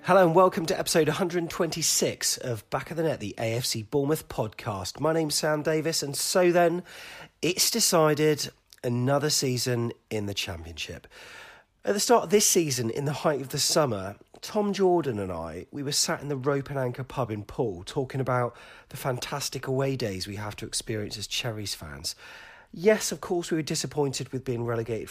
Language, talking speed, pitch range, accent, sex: English, 185 wpm, 115-155 Hz, British, male